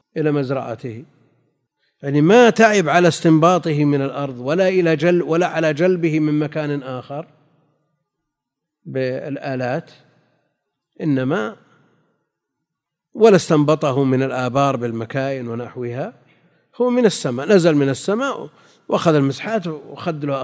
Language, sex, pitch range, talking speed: Arabic, male, 145-200 Hz, 105 wpm